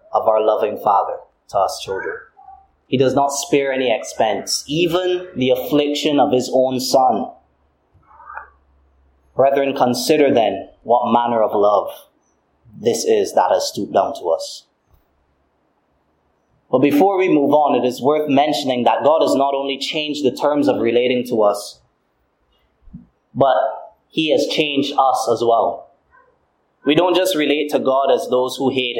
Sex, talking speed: male, 150 wpm